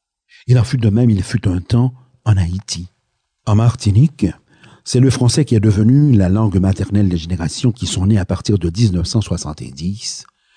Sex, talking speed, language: male, 175 wpm, French